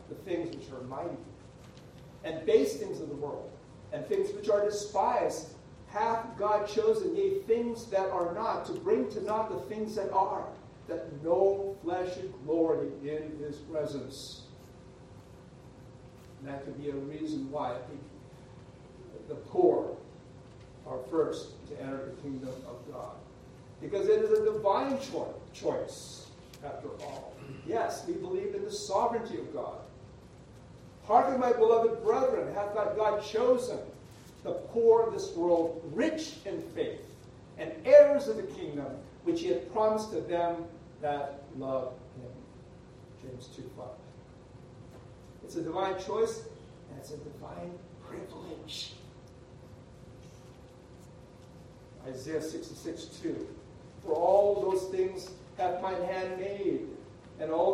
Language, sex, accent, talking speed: English, male, American, 135 wpm